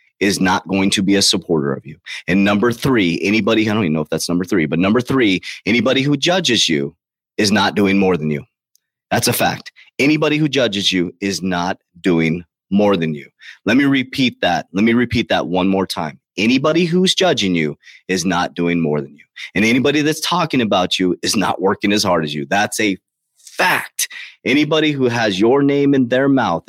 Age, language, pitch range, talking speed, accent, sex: 30-49, English, 95-130 Hz, 205 wpm, American, male